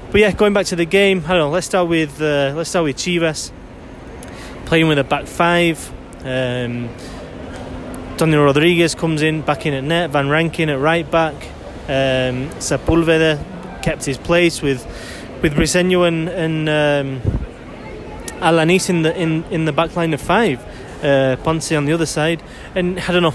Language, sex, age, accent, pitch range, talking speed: English, male, 20-39, British, 140-170 Hz, 170 wpm